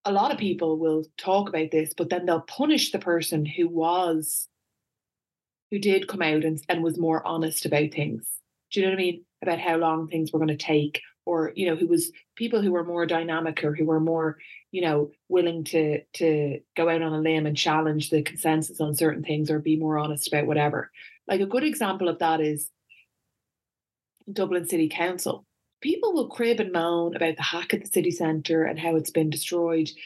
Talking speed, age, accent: 210 wpm, 20-39, Irish